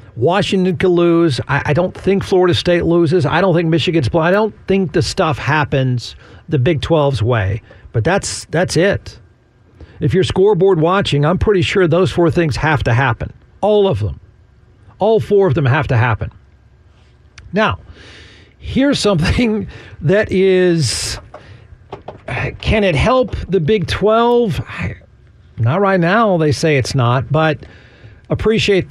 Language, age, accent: English, 50-69, American